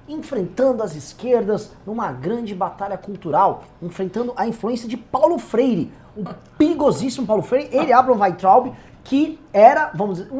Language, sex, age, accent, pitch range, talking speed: Portuguese, male, 20-39, Brazilian, 195-265 Hz, 145 wpm